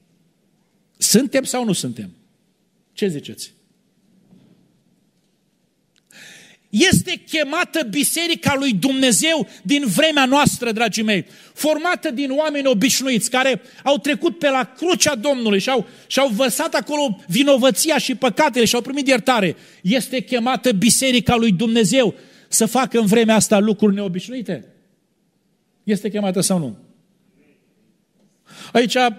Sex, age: male, 40-59